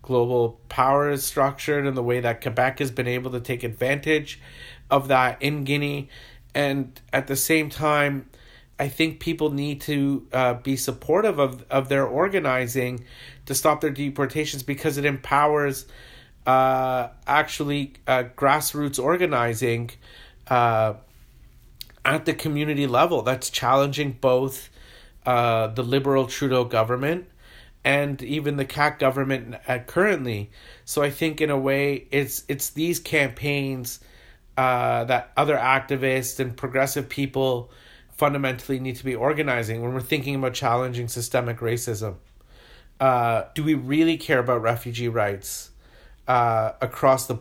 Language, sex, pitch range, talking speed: English, male, 120-140 Hz, 135 wpm